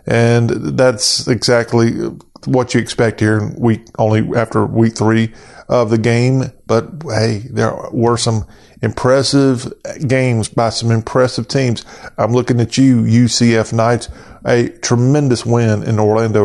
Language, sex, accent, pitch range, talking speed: English, male, American, 110-130 Hz, 130 wpm